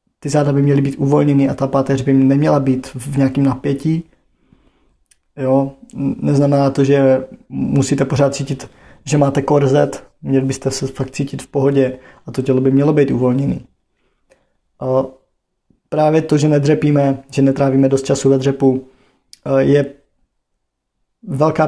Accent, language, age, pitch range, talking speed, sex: native, Czech, 20-39, 135-145 Hz, 140 wpm, male